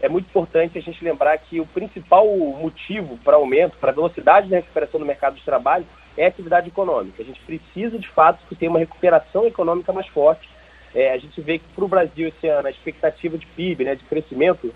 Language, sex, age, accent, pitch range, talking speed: Portuguese, male, 30-49, Brazilian, 155-205 Hz, 220 wpm